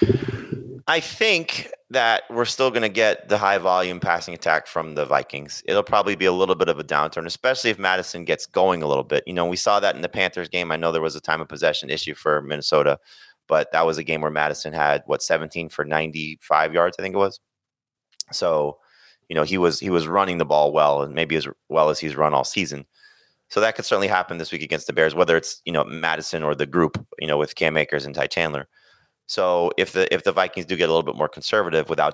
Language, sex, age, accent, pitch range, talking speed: English, male, 30-49, American, 75-90 Hz, 240 wpm